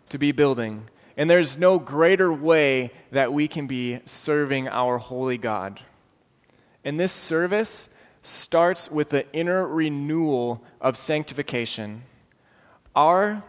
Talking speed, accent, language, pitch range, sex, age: 120 wpm, American, English, 130-170 Hz, male, 20-39